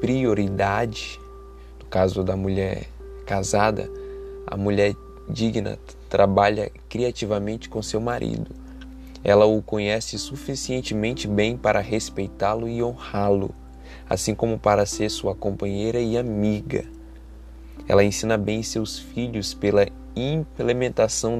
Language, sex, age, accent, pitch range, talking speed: Portuguese, male, 20-39, Brazilian, 80-105 Hz, 105 wpm